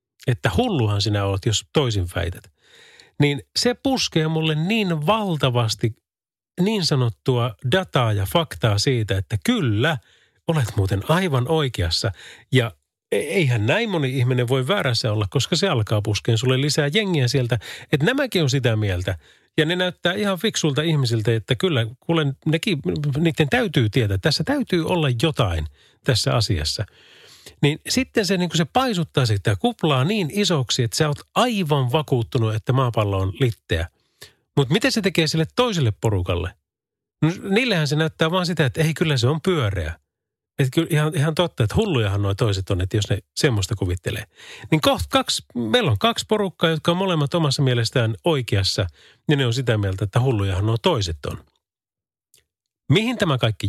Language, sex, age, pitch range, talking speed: Finnish, male, 40-59, 110-165 Hz, 165 wpm